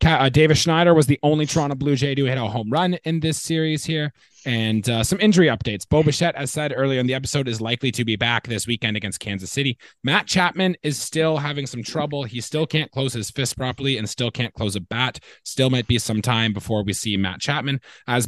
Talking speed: 235 wpm